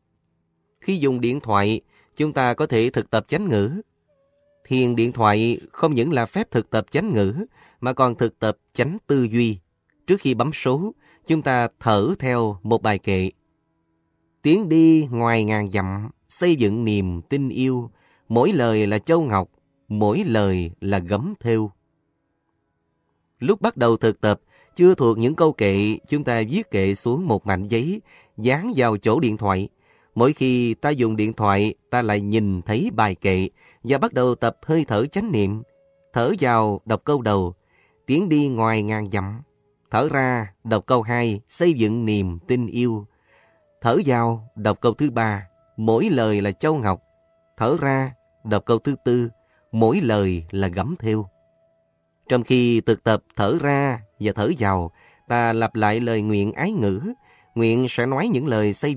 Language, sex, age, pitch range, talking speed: Vietnamese, male, 20-39, 100-130 Hz, 170 wpm